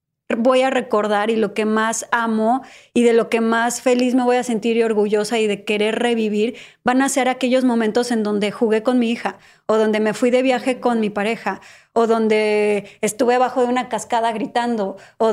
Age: 20-39